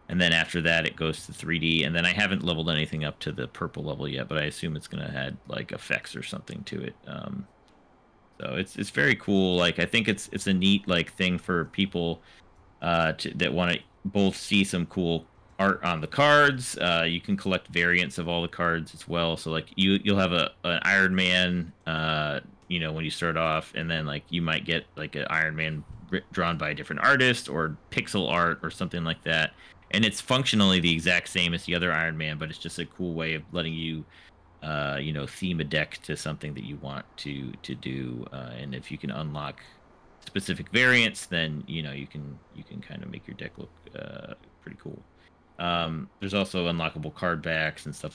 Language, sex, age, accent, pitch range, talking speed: English, male, 30-49, American, 80-95 Hz, 220 wpm